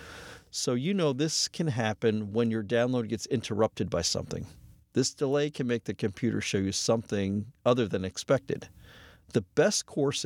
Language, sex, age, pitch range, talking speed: English, male, 50-69, 105-150 Hz, 165 wpm